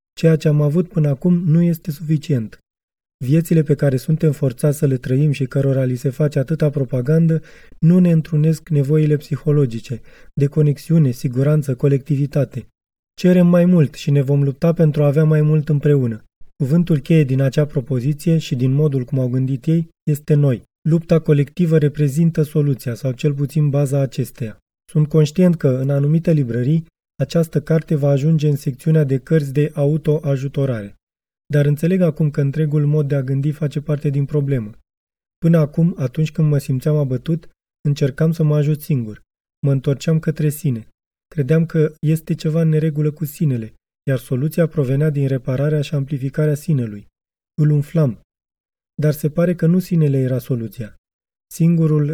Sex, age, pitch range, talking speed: male, 20-39, 140-160 Hz, 160 wpm